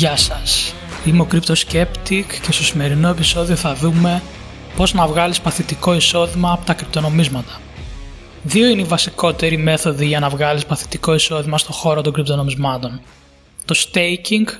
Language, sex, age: Greek, male, 20-39